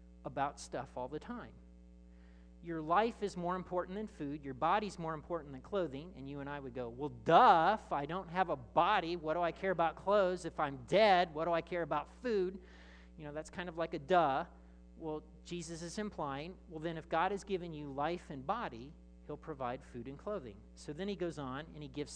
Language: English